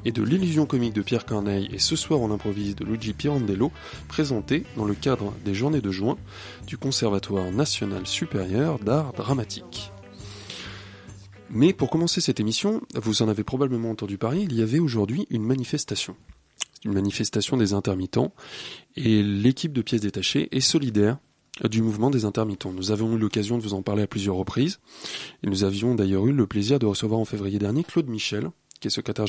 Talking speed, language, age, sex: 180 wpm, French, 20-39, male